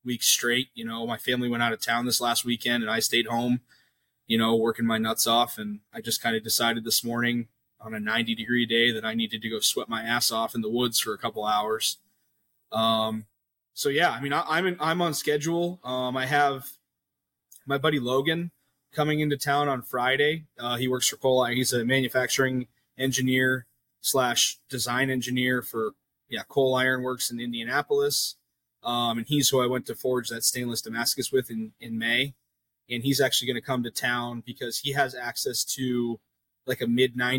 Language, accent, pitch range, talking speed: English, American, 115-135 Hz, 195 wpm